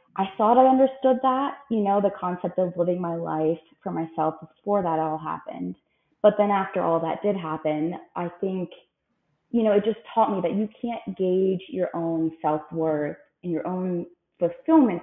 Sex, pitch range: female, 165-210 Hz